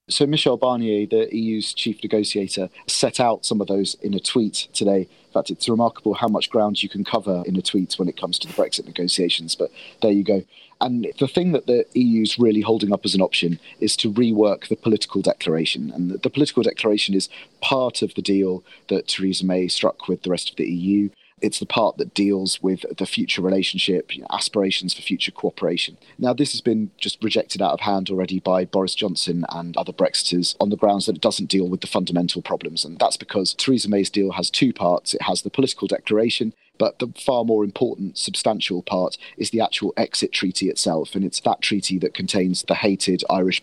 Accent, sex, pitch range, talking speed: British, male, 95-115 Hz, 215 wpm